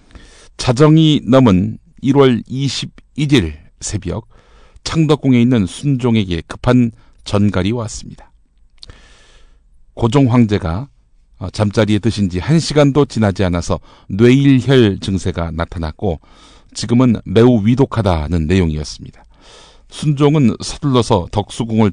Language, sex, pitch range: Korean, male, 95-130 Hz